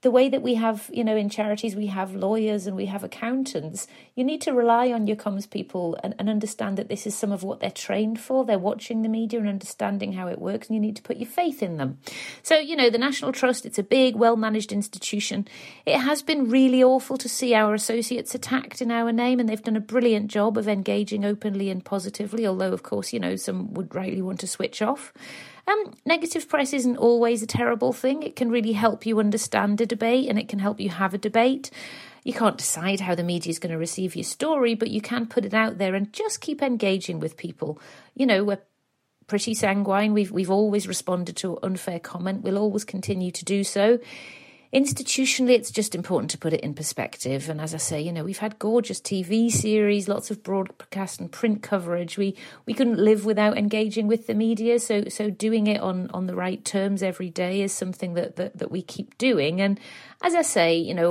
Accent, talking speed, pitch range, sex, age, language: British, 225 wpm, 190-240 Hz, female, 40-59, English